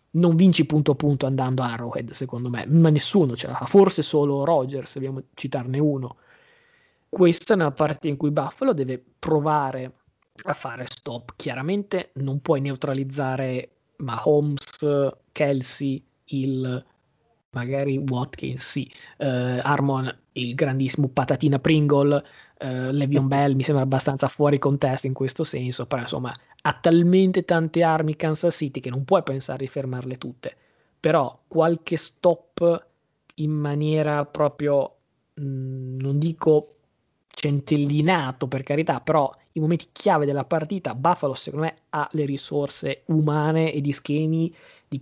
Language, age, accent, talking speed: Italian, 20-39, native, 140 wpm